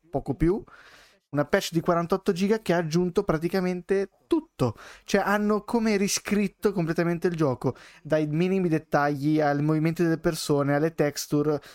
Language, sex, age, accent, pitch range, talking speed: Italian, male, 20-39, native, 140-175 Hz, 145 wpm